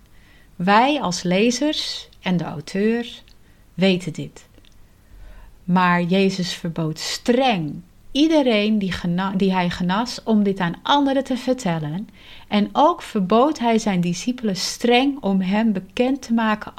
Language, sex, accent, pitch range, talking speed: Dutch, female, Dutch, 175-230 Hz, 120 wpm